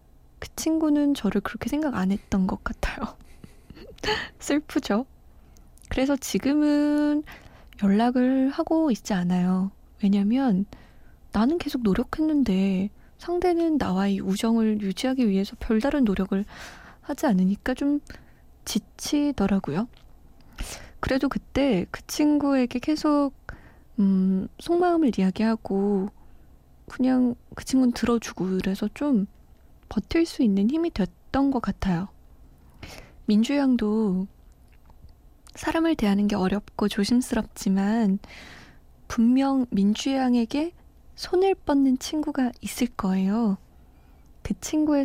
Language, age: Korean, 20-39